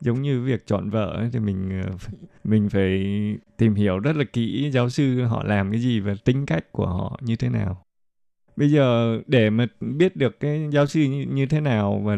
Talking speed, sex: 205 wpm, male